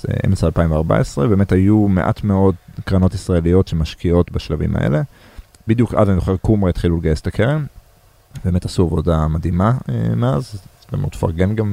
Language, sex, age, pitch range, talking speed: Hebrew, male, 30-49, 90-110 Hz, 145 wpm